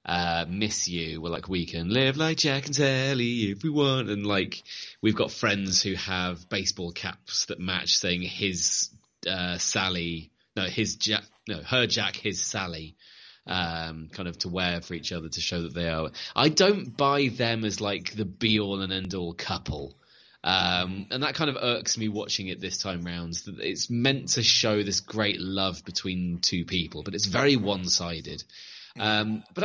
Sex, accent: male, British